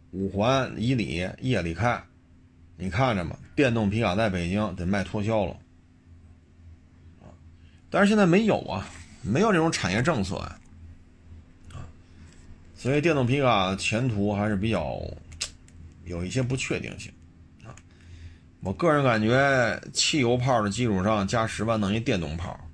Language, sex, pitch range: Chinese, male, 85-130 Hz